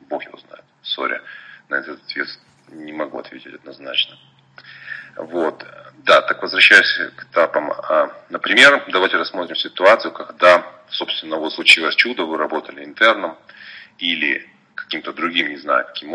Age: 30-49